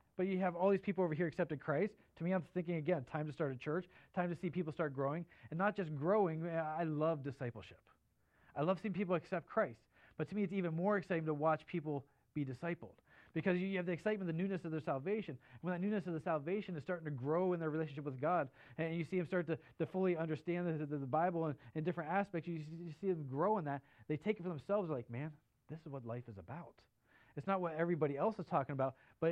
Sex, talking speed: male, 250 wpm